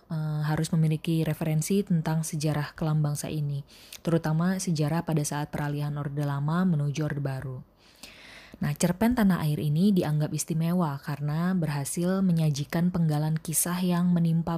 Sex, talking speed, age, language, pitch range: female, 130 wpm, 20-39, Indonesian, 150-170 Hz